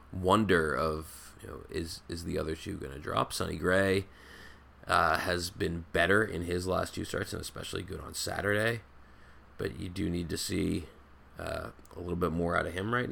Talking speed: 195 wpm